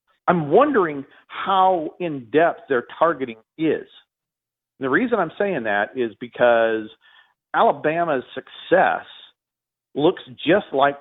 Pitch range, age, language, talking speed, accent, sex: 125-170 Hz, 40-59, English, 115 wpm, American, male